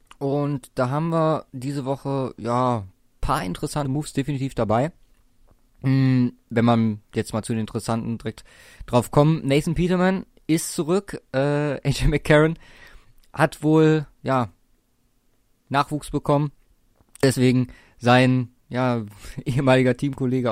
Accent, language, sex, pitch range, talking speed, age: German, German, male, 125-150 Hz, 115 wpm, 20-39